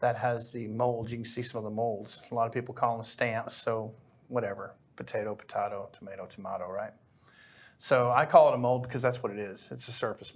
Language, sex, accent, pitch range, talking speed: English, male, American, 110-125 Hz, 225 wpm